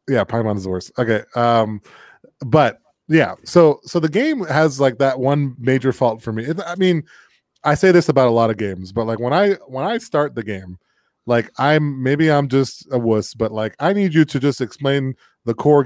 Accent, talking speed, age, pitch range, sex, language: American, 220 wpm, 20-39, 115-155 Hz, male, English